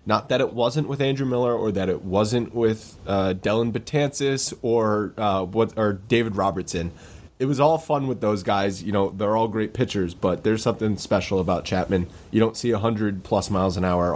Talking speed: 210 wpm